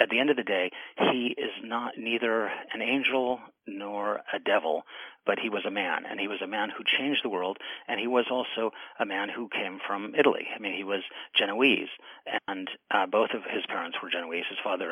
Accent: American